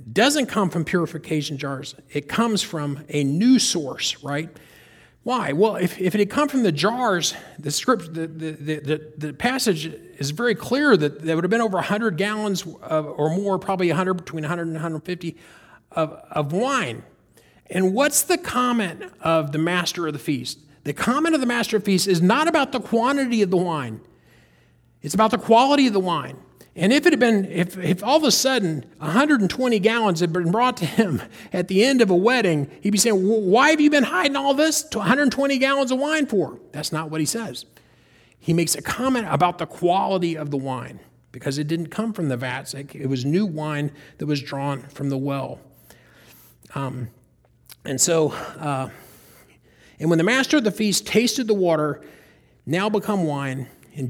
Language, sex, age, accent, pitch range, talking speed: English, male, 40-59, American, 150-225 Hz, 195 wpm